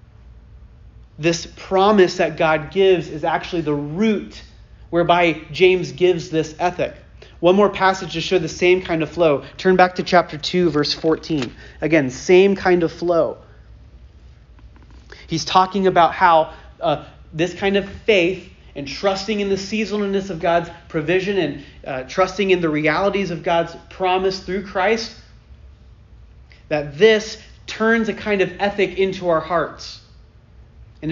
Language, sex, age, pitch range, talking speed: English, male, 30-49, 155-195 Hz, 145 wpm